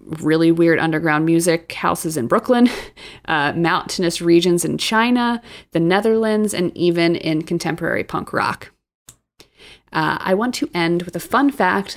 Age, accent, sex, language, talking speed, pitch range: 30-49, American, female, English, 145 wpm, 170-225 Hz